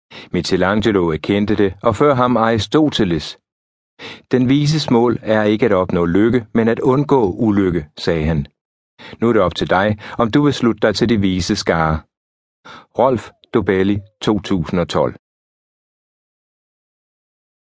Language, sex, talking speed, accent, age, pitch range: Danish, male, 135 wpm, native, 60-79, 90-120 Hz